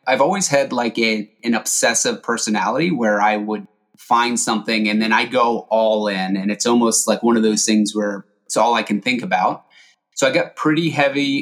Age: 30-49